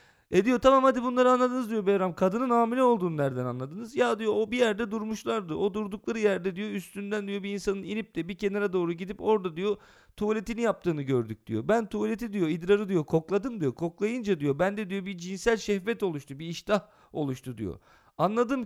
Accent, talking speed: native, 185 wpm